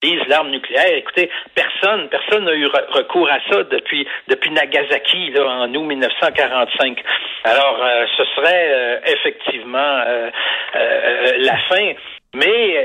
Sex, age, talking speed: male, 60-79, 130 wpm